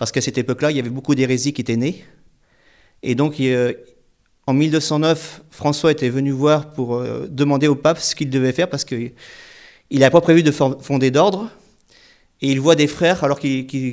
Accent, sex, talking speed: French, male, 210 wpm